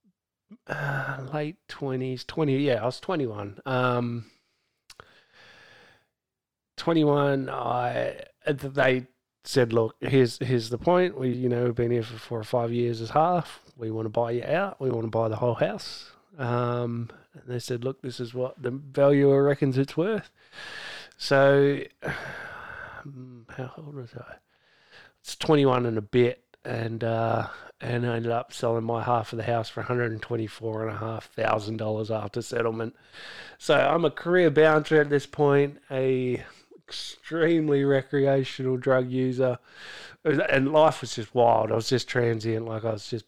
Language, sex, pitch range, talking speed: English, male, 115-140 Hz, 150 wpm